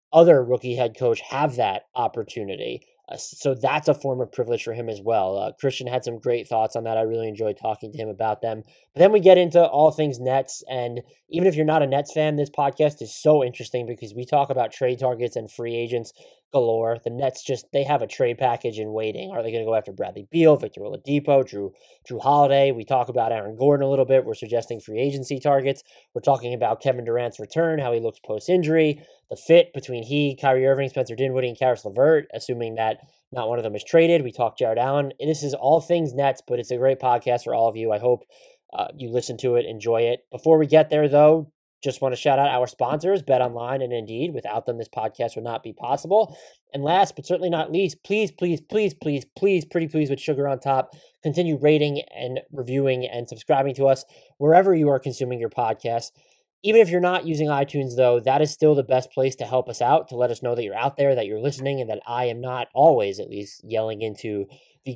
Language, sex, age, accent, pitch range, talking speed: English, male, 20-39, American, 120-150 Hz, 230 wpm